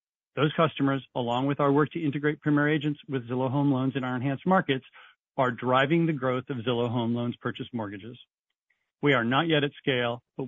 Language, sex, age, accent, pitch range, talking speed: English, male, 40-59, American, 120-150 Hz, 200 wpm